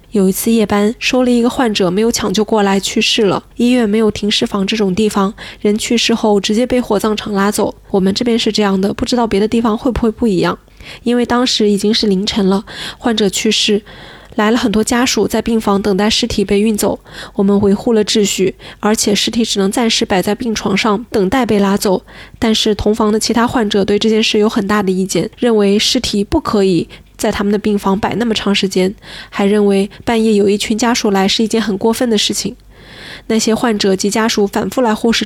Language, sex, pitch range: Chinese, female, 200-230 Hz